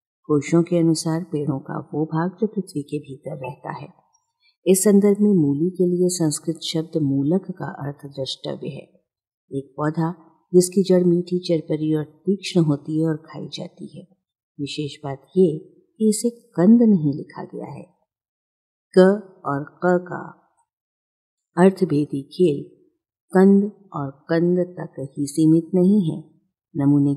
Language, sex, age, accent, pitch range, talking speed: Hindi, female, 50-69, native, 145-190 Hz, 145 wpm